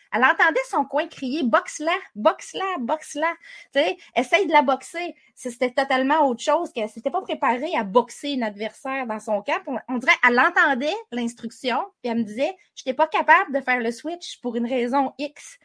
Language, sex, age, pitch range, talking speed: French, female, 30-49, 235-295 Hz, 205 wpm